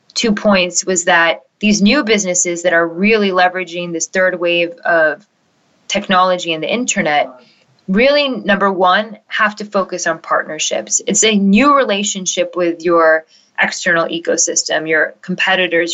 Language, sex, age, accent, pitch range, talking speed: English, female, 20-39, American, 175-210 Hz, 140 wpm